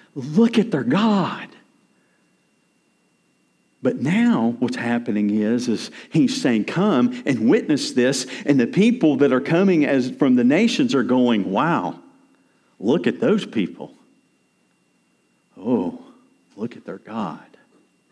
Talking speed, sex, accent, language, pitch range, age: 125 wpm, male, American, English, 170-245 Hz, 50-69